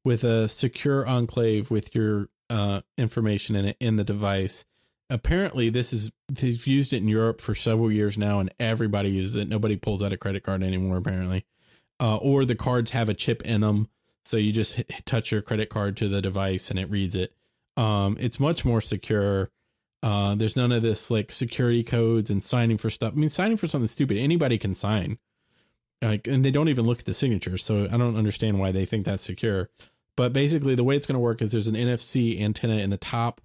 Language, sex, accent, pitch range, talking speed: English, male, American, 105-120 Hz, 215 wpm